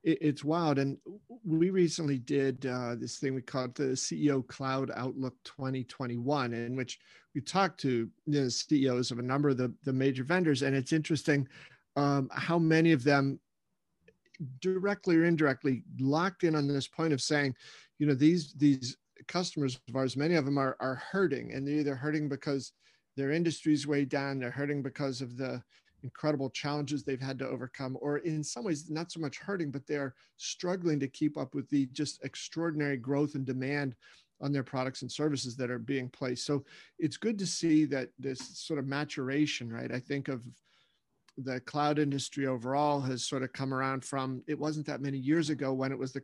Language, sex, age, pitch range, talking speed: English, male, 40-59, 130-150 Hz, 190 wpm